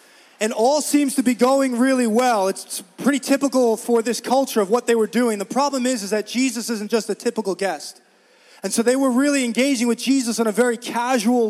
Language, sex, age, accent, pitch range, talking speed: English, male, 20-39, American, 215-255 Hz, 220 wpm